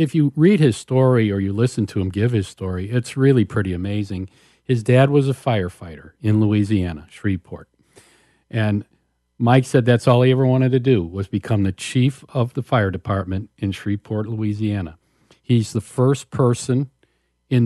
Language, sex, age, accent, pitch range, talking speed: English, male, 50-69, American, 100-125 Hz, 175 wpm